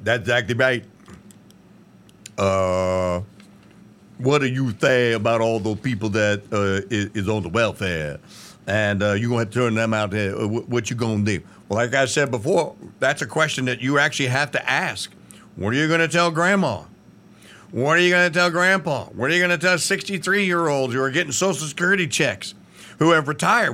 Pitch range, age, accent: 125-190 Hz, 50-69, American